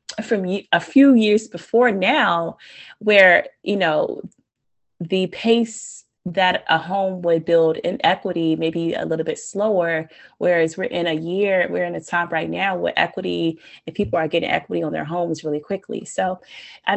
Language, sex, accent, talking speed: English, female, American, 170 wpm